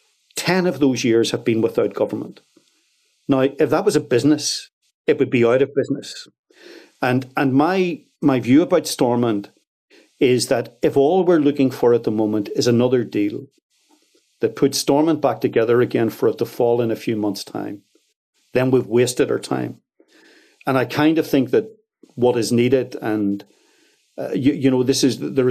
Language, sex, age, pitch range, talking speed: English, male, 50-69, 120-150 Hz, 180 wpm